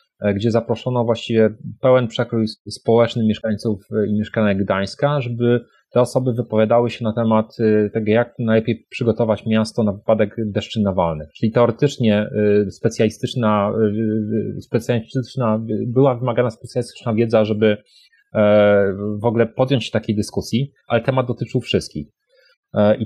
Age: 30-49